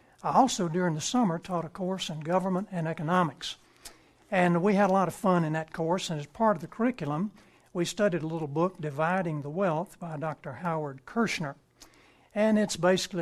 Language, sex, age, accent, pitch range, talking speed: English, male, 60-79, American, 165-195 Hz, 195 wpm